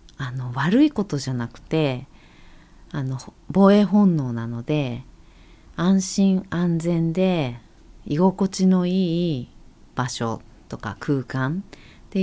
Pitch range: 125-185 Hz